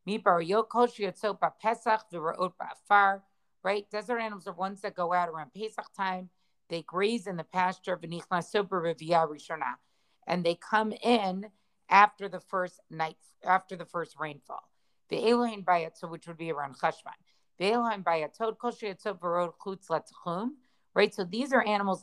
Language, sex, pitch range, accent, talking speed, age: English, female, 175-220 Hz, American, 105 wpm, 50-69